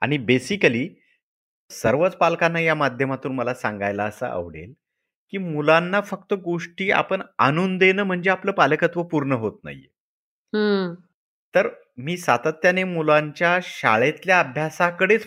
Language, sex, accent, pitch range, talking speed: Marathi, male, native, 125-185 Hz, 115 wpm